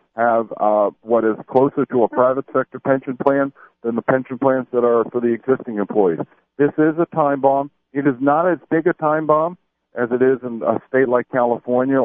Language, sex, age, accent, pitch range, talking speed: English, male, 50-69, American, 115-145 Hz, 210 wpm